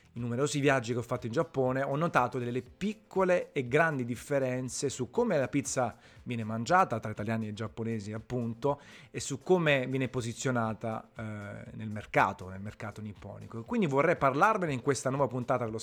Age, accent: 30-49, native